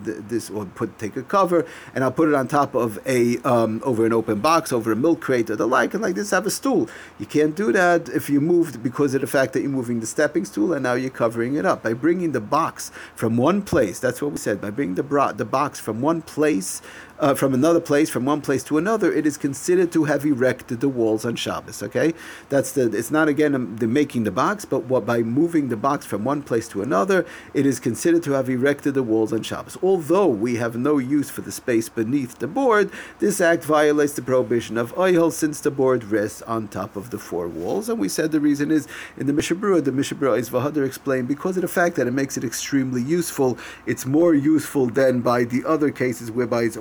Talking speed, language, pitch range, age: 240 wpm, English, 115-150 Hz, 50-69